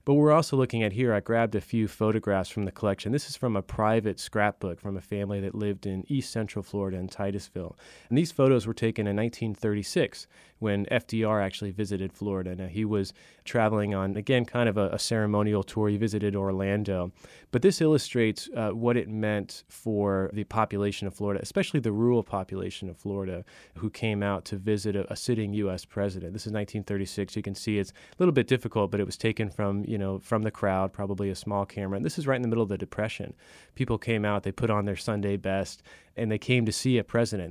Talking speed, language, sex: 220 wpm, English, male